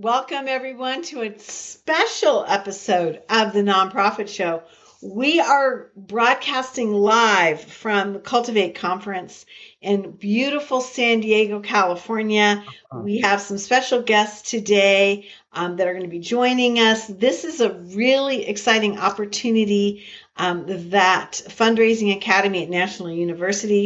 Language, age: English, 50-69